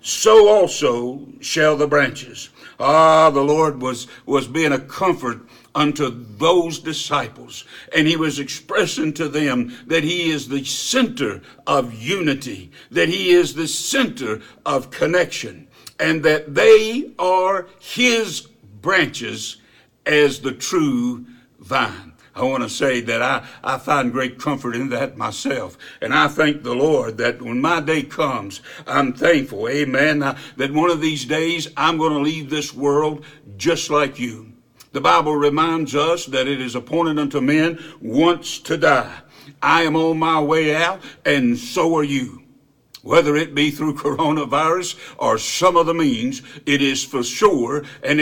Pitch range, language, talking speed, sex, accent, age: 140-165 Hz, English, 150 wpm, male, American, 60-79